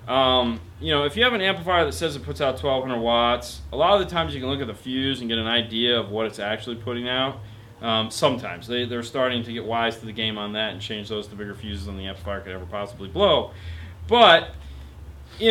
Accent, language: American, English